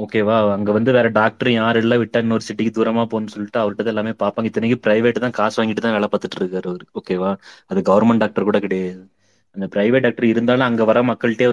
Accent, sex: native, male